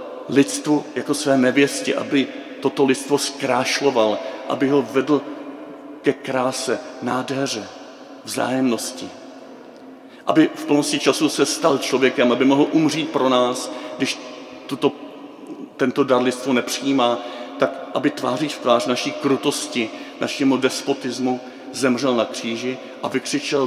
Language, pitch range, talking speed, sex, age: Czech, 125-145 Hz, 120 wpm, male, 50-69